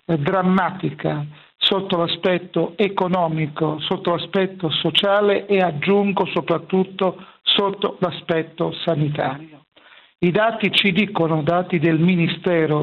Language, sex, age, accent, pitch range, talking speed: Italian, male, 50-69, native, 165-200 Hz, 95 wpm